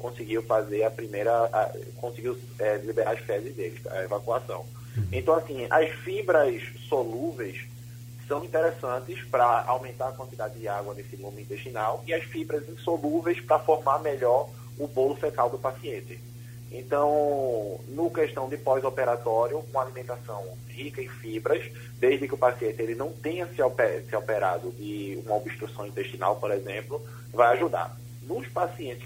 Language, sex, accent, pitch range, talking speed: Portuguese, male, Brazilian, 115-140 Hz, 145 wpm